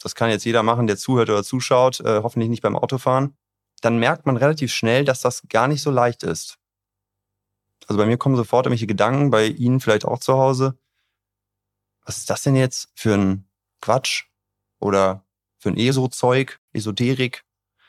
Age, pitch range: 30-49, 100-130 Hz